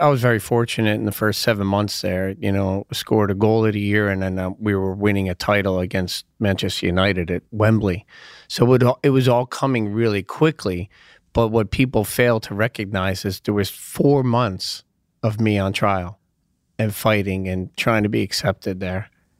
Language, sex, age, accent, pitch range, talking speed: English, male, 30-49, American, 95-110 Hz, 190 wpm